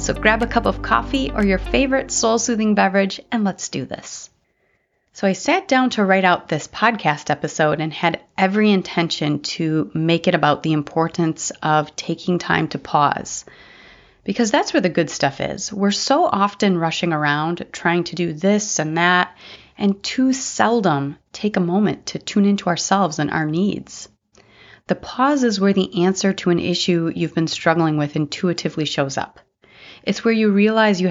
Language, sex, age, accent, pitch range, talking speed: English, female, 30-49, American, 160-205 Hz, 175 wpm